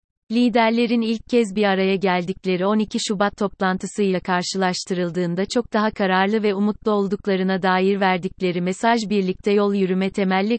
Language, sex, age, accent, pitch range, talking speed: Turkish, female, 30-49, native, 185-215 Hz, 130 wpm